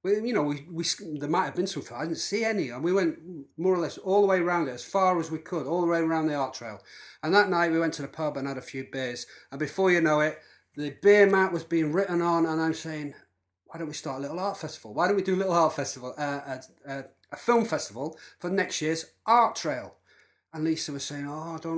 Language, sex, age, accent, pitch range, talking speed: English, male, 40-59, British, 150-195 Hz, 275 wpm